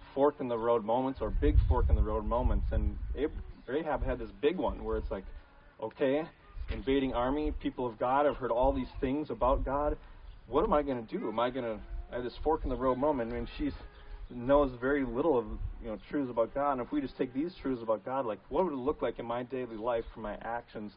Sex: male